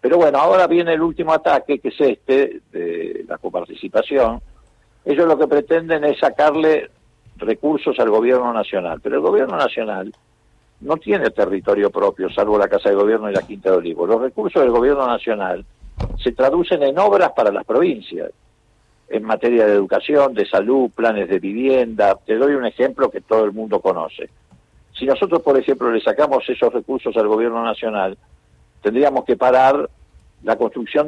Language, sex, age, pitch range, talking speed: Spanish, male, 50-69, 110-160 Hz, 170 wpm